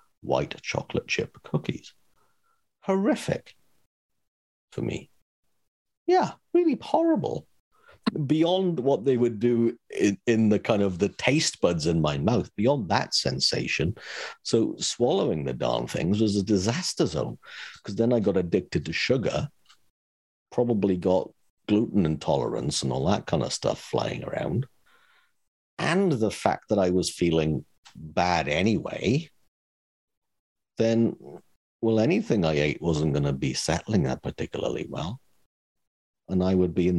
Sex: male